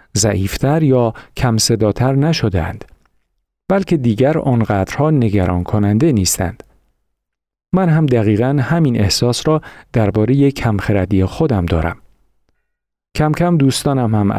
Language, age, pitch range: Persian, 50-69, 100-135 Hz